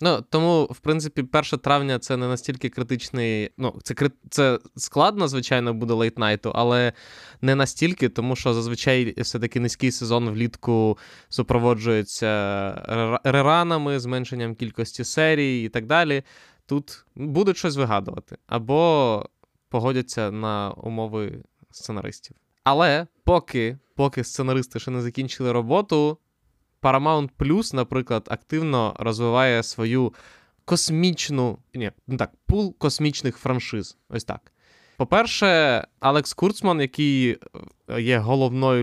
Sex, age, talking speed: male, 20-39, 115 wpm